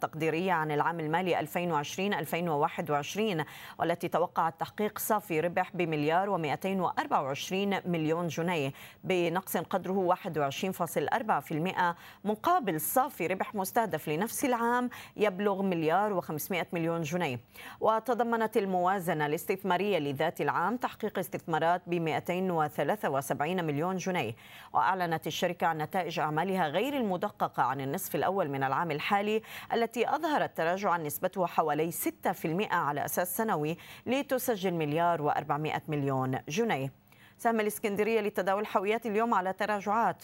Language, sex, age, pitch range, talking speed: Arabic, female, 20-39, 160-210 Hz, 110 wpm